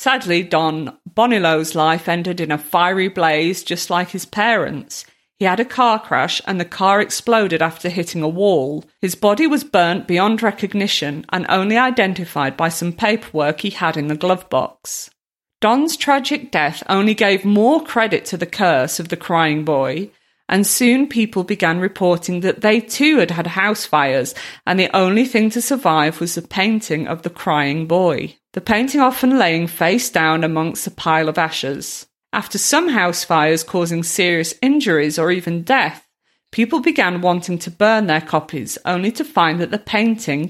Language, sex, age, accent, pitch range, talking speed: English, female, 40-59, British, 165-220 Hz, 175 wpm